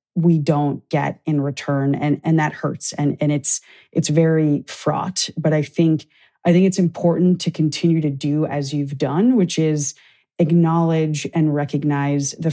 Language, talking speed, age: English, 170 wpm, 20-39